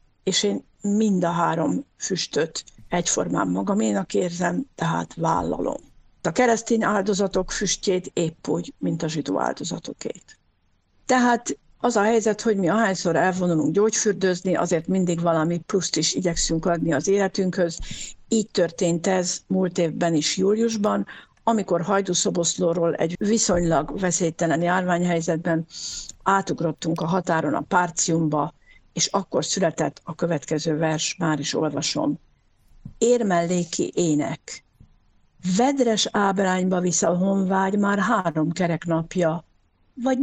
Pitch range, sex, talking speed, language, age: 170-215 Hz, female, 115 wpm, Hungarian, 60-79